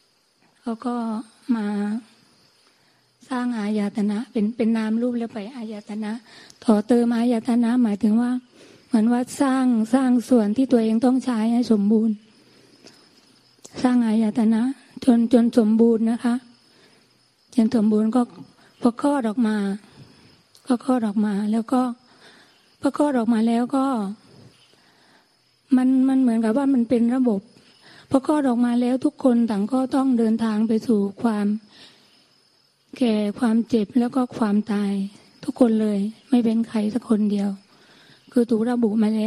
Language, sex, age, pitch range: Thai, female, 20-39, 220-255 Hz